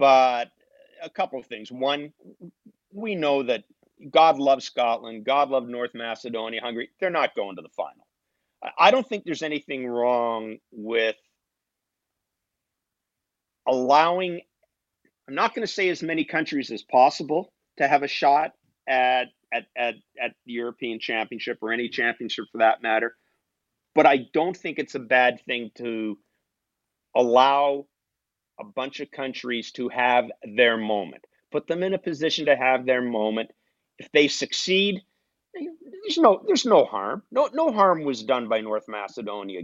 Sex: male